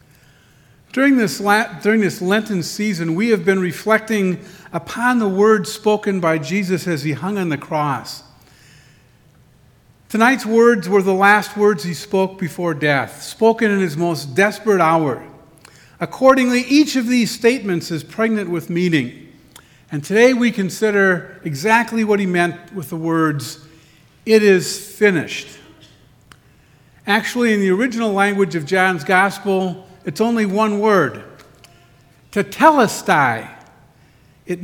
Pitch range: 155-215 Hz